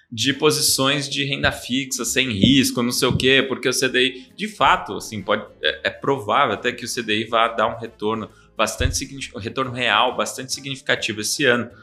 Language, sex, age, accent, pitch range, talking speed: Portuguese, male, 20-39, Brazilian, 110-135 Hz, 195 wpm